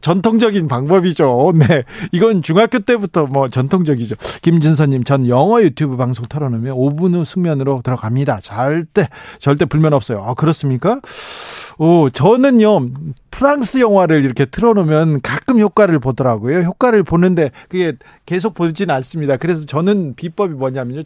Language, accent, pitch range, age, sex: Korean, native, 135-195 Hz, 40-59, male